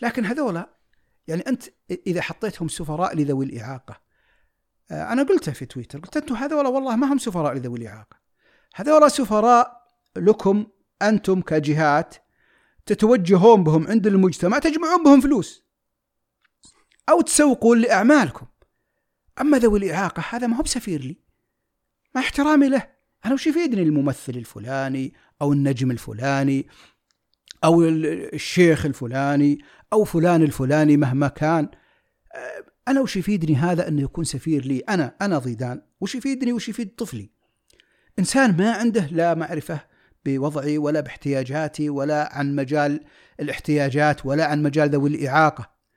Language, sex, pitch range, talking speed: Arabic, male, 145-225 Hz, 125 wpm